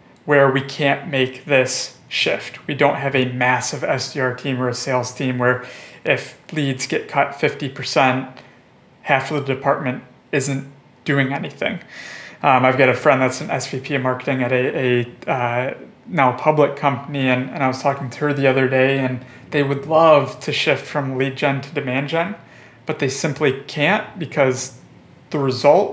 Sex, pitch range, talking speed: male, 130-145 Hz, 175 wpm